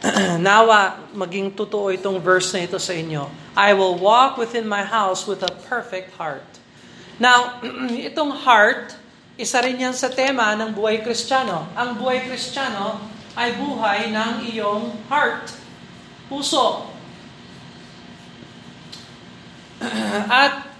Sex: male